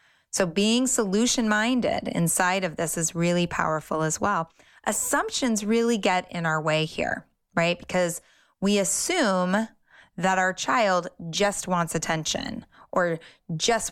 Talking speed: 130 wpm